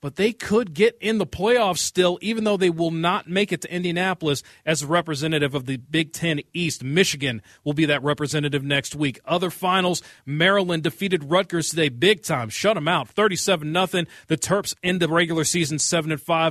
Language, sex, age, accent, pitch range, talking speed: English, male, 40-59, American, 150-195 Hz, 190 wpm